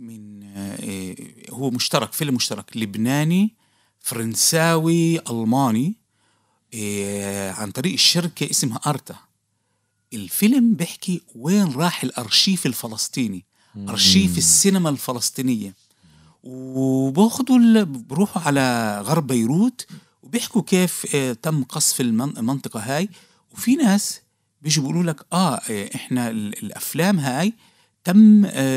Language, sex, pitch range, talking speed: Arabic, male, 115-175 Hz, 90 wpm